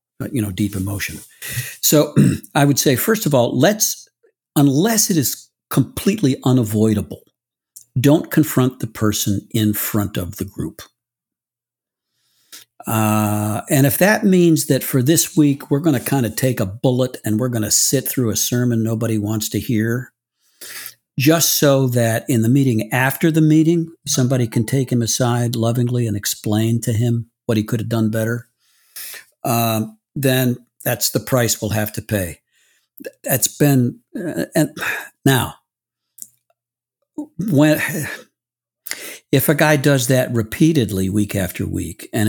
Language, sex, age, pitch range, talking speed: English, male, 60-79, 110-135 Hz, 150 wpm